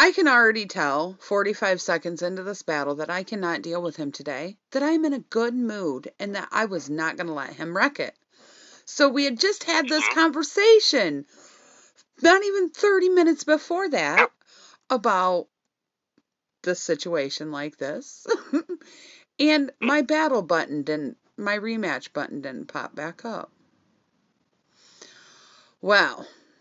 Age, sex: 40-59, female